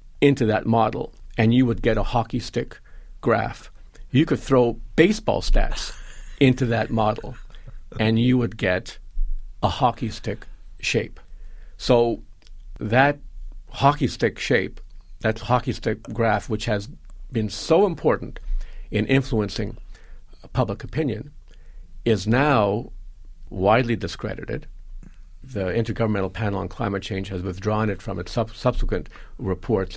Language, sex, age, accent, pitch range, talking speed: English, male, 50-69, American, 100-125 Hz, 125 wpm